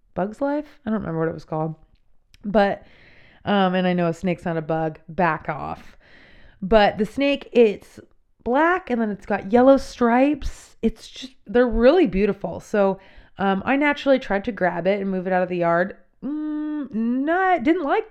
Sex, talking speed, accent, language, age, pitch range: female, 185 wpm, American, English, 20-39, 185-270 Hz